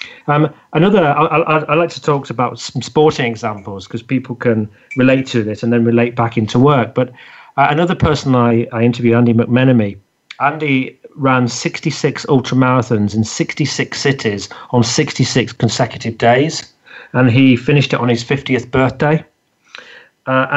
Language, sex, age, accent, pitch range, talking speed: English, male, 40-59, British, 120-145 Hz, 160 wpm